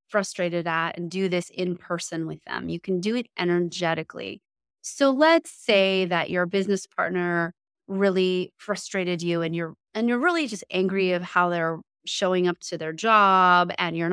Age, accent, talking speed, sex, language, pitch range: 30-49, American, 175 wpm, female, English, 170-225 Hz